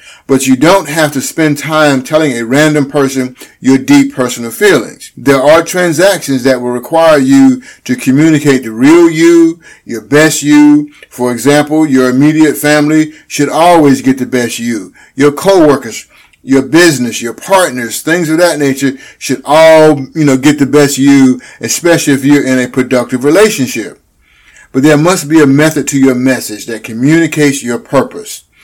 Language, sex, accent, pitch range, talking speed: English, male, American, 130-160 Hz, 165 wpm